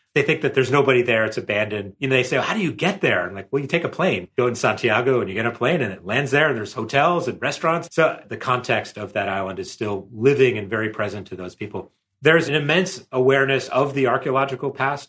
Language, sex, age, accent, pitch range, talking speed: English, male, 30-49, American, 110-135 Hz, 265 wpm